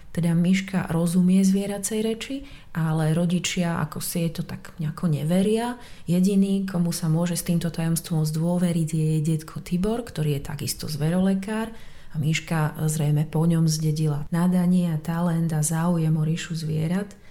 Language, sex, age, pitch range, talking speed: Slovak, female, 30-49, 160-185 Hz, 155 wpm